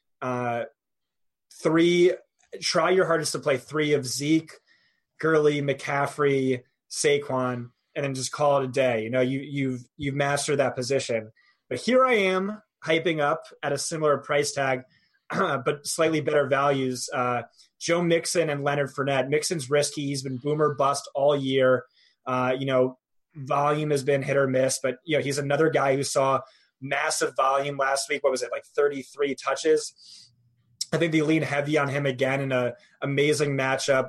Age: 20-39